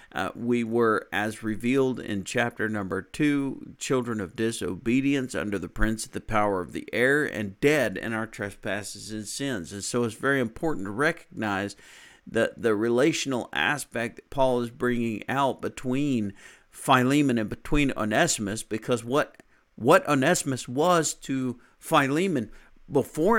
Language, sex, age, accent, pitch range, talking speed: English, male, 50-69, American, 105-130 Hz, 145 wpm